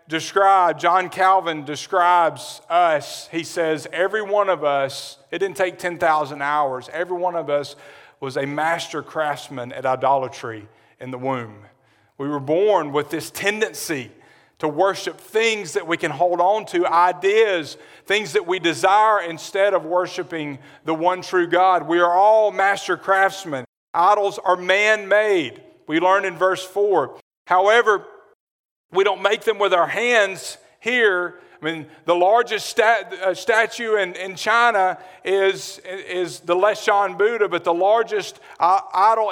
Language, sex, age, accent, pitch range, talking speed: English, male, 40-59, American, 170-210 Hz, 150 wpm